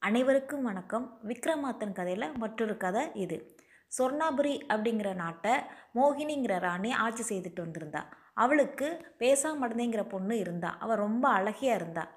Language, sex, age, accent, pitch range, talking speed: Tamil, female, 20-39, native, 195-255 Hz, 115 wpm